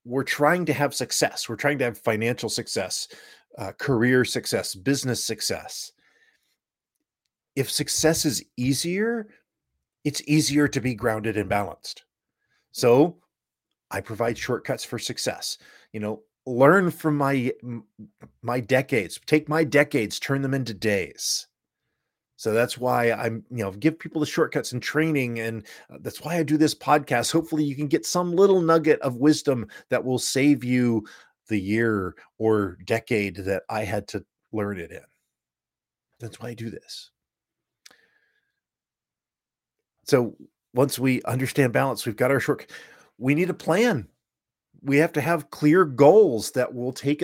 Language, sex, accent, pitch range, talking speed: English, male, American, 115-155 Hz, 150 wpm